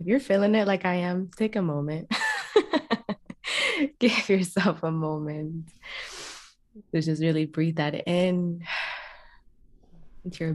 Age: 20-39